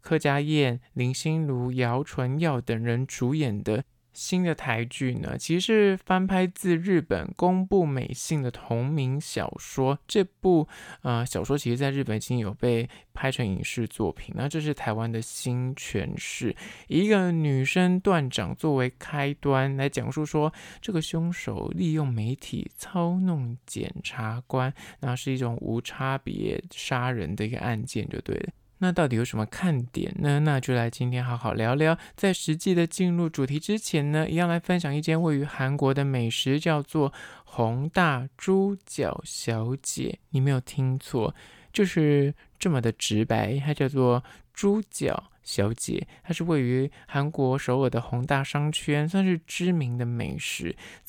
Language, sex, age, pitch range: Chinese, male, 20-39, 125-165 Hz